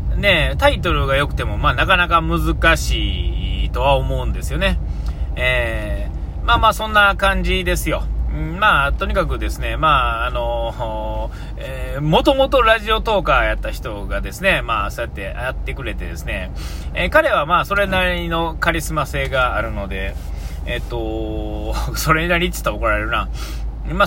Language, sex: Japanese, male